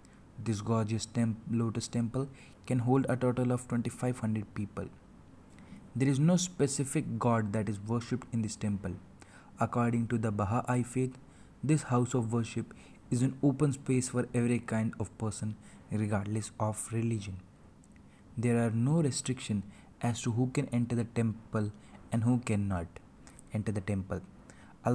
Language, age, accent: English, 20-39, Indian